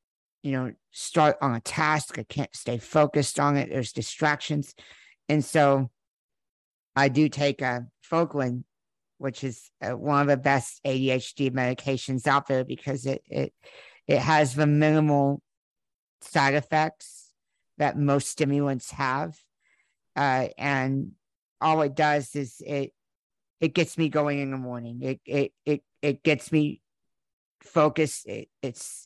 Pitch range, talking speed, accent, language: 130-145 Hz, 140 wpm, American, English